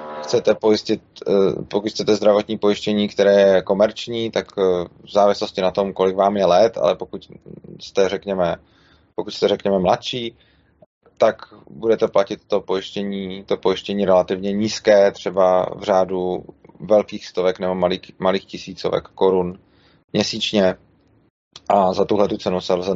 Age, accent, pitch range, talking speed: 20-39, native, 95-105 Hz, 140 wpm